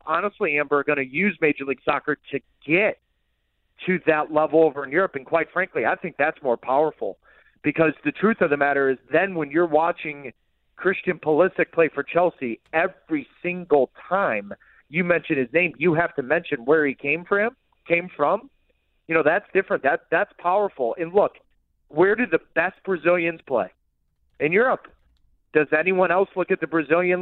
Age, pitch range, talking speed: 40-59, 150-180 Hz, 185 wpm